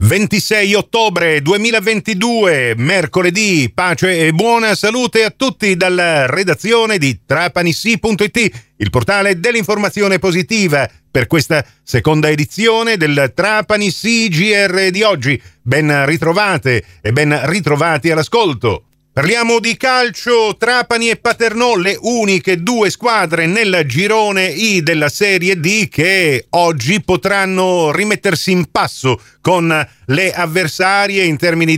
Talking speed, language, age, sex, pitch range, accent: 115 wpm, Italian, 40-59, male, 140-195 Hz, native